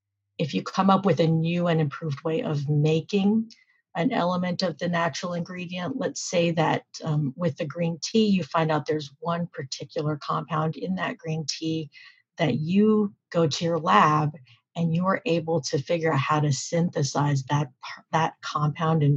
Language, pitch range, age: English, 150-175 Hz, 40-59